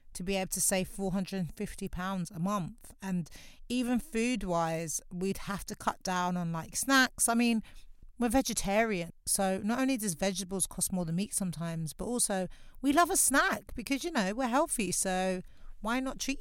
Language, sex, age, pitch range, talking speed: English, female, 40-59, 180-225 Hz, 175 wpm